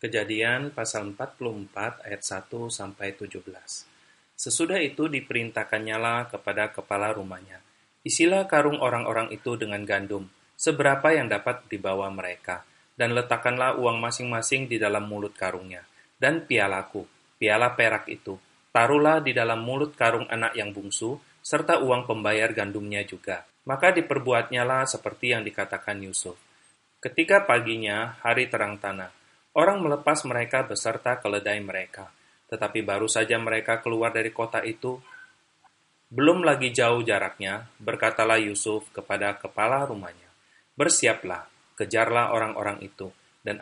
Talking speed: 120 wpm